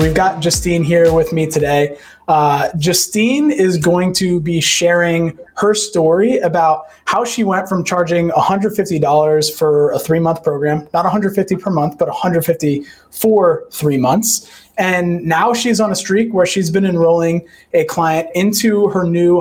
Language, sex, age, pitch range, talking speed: English, male, 20-39, 155-180 Hz, 160 wpm